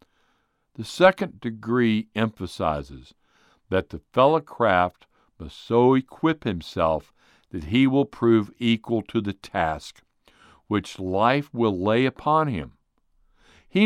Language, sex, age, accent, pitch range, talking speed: English, male, 60-79, American, 95-135 Hz, 115 wpm